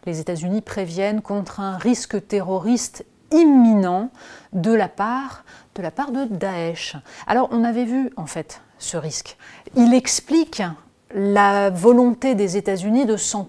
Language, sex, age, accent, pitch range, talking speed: French, female, 30-49, French, 180-235 Hz, 140 wpm